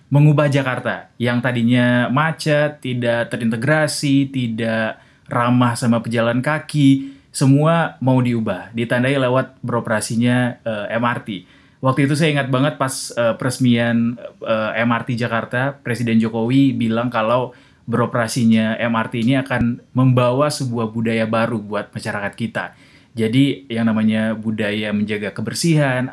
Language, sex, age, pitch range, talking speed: Indonesian, male, 20-39, 115-140 Hz, 120 wpm